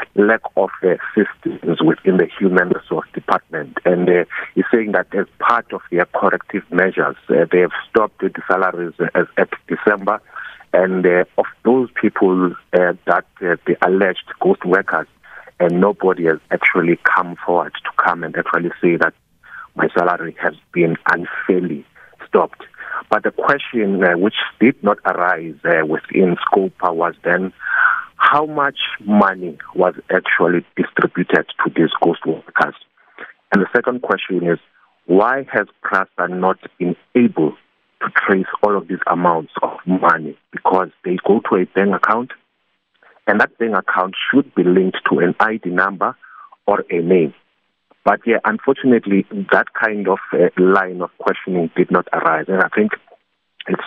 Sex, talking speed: male, 155 wpm